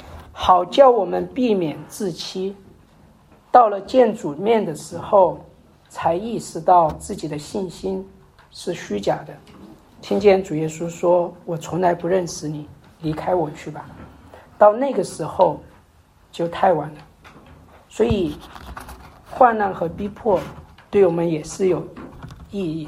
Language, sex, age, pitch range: Chinese, male, 50-69, 150-200 Hz